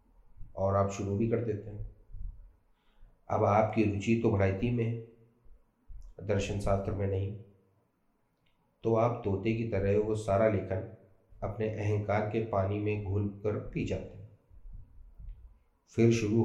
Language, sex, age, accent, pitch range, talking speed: Hindi, male, 40-59, native, 100-115 Hz, 135 wpm